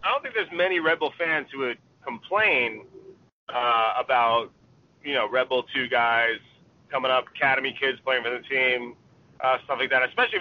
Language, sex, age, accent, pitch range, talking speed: English, male, 30-49, American, 115-145 Hz, 185 wpm